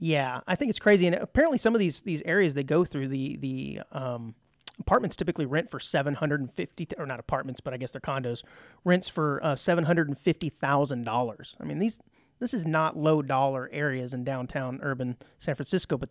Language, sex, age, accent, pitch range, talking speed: English, male, 30-49, American, 135-180 Hz, 215 wpm